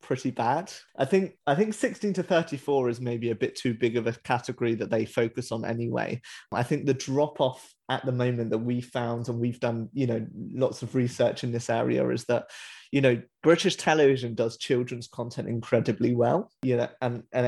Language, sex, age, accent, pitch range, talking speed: English, male, 30-49, British, 120-140 Hz, 205 wpm